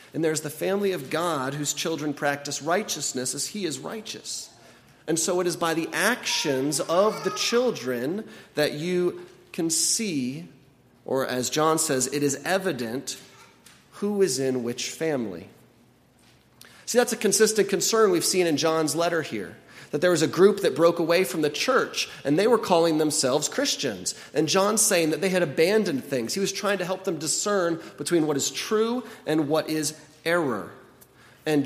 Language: English